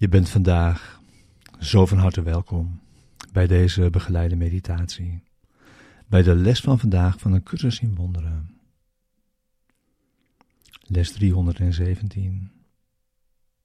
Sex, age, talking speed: male, 40-59, 100 wpm